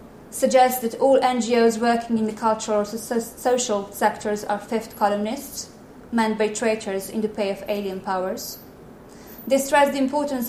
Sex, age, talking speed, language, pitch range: female, 20-39, 160 wpm, English, 210-240 Hz